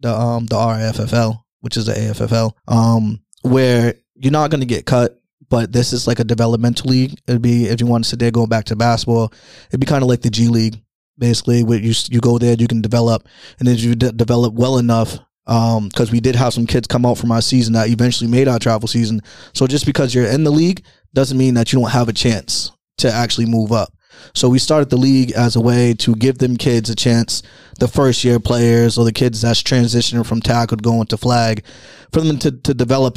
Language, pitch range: English, 115-135 Hz